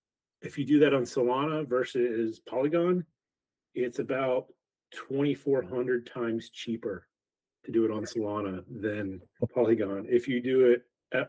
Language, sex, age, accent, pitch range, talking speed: English, male, 30-49, American, 115-140 Hz, 135 wpm